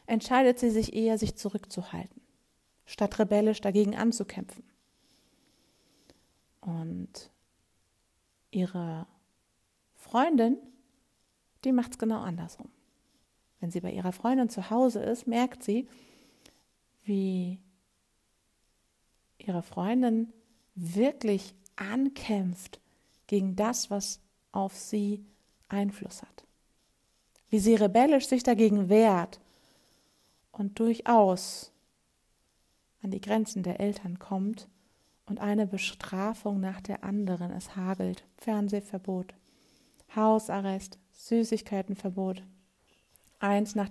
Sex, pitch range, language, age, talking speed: female, 190-225 Hz, German, 50-69, 90 wpm